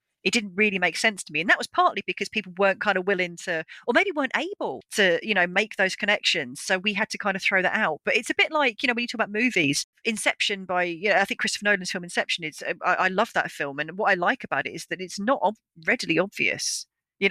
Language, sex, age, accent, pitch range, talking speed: Finnish, female, 40-59, British, 180-235 Hz, 270 wpm